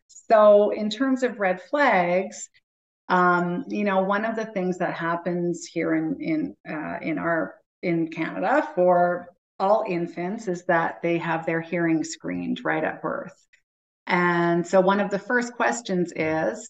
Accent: American